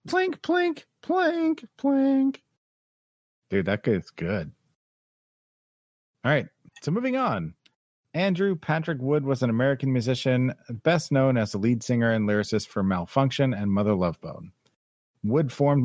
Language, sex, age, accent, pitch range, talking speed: English, male, 40-59, American, 105-140 Hz, 135 wpm